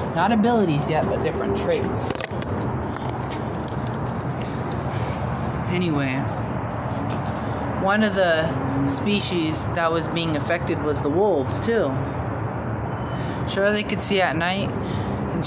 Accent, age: American, 20-39